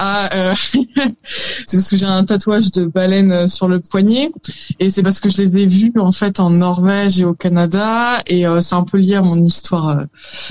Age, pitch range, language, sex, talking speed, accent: 20-39, 165-200 Hz, French, female, 215 wpm, French